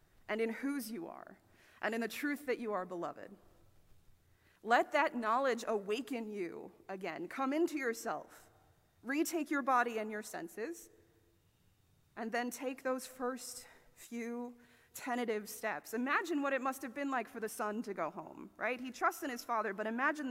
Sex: female